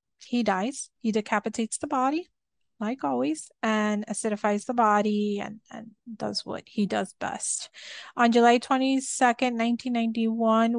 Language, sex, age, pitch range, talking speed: English, female, 30-49, 210-245 Hz, 130 wpm